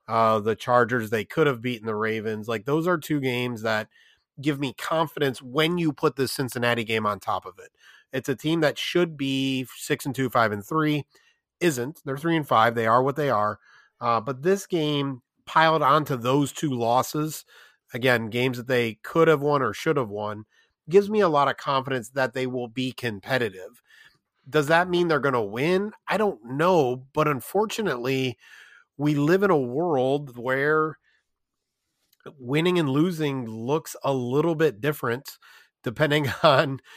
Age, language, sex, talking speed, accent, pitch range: 30-49, English, male, 175 wpm, American, 125-155 Hz